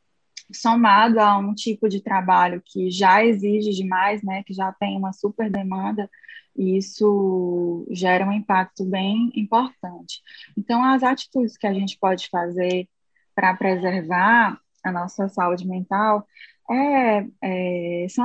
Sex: female